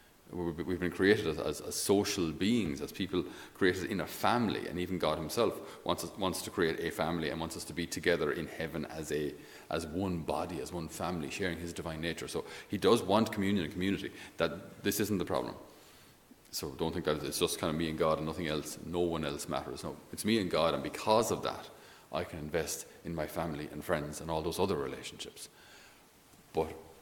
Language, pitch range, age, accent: English, 80-95 Hz, 30-49, Irish